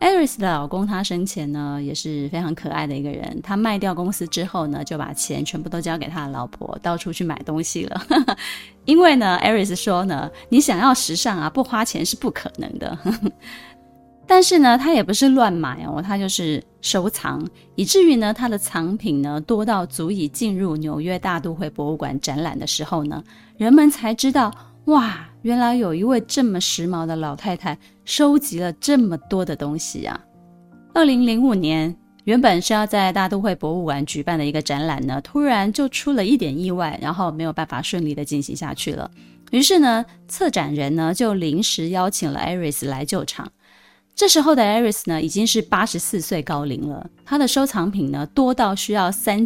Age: 20-39